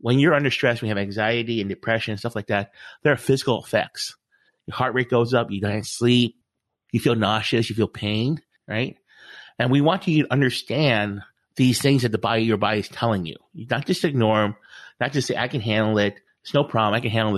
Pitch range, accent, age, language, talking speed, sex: 105-125 Hz, American, 30-49, English, 225 wpm, male